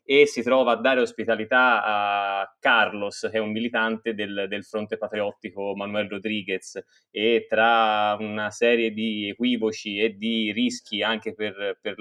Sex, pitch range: male, 105-115 Hz